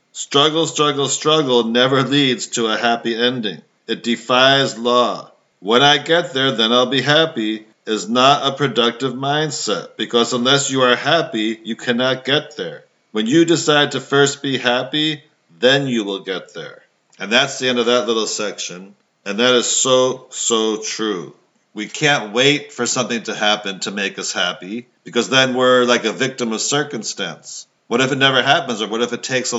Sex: male